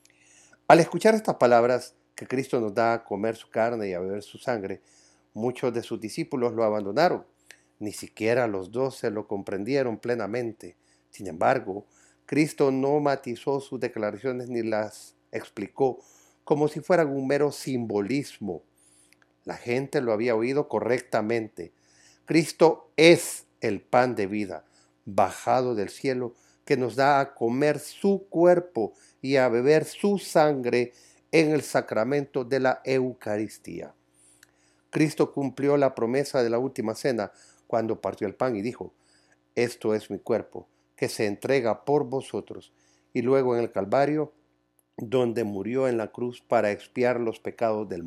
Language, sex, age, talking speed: Spanish, male, 50-69, 145 wpm